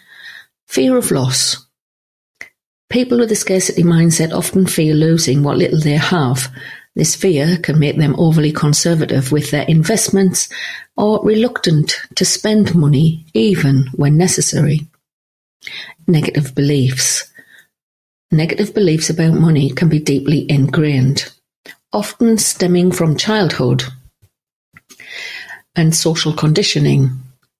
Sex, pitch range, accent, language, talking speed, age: female, 140-175 Hz, British, English, 110 wpm, 50-69